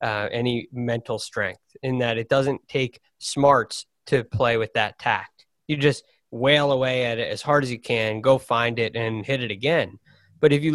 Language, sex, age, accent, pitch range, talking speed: English, male, 20-39, American, 115-150 Hz, 200 wpm